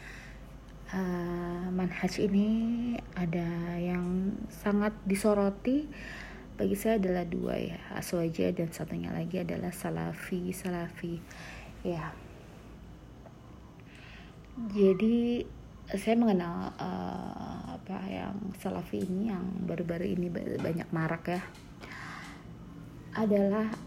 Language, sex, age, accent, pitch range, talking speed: Indonesian, female, 20-39, native, 175-205 Hz, 90 wpm